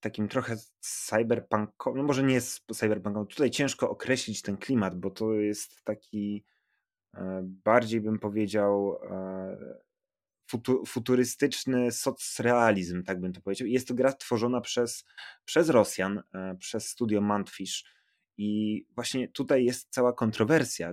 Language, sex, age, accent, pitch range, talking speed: Polish, male, 20-39, native, 95-120 Hz, 130 wpm